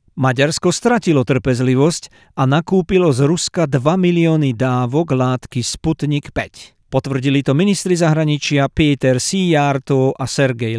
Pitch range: 135-170 Hz